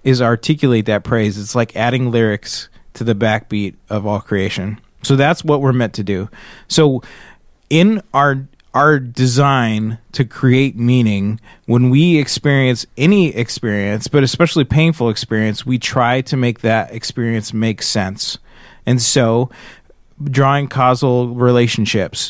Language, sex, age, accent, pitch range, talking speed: English, male, 30-49, American, 115-140 Hz, 135 wpm